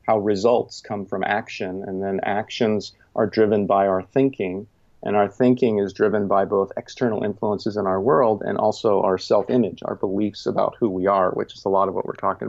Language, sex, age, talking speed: English, male, 40-59, 200 wpm